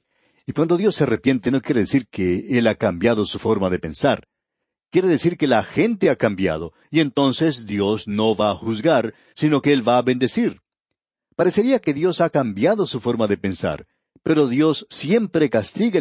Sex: male